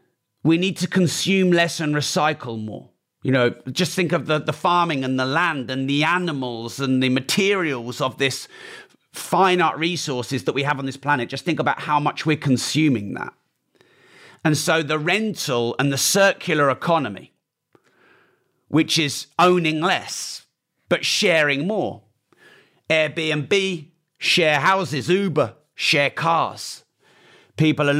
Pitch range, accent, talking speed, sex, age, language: 135-170 Hz, British, 145 wpm, male, 40-59, English